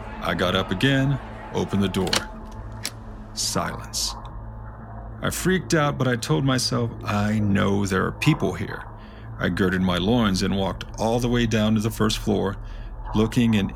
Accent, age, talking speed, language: American, 40-59, 160 wpm, English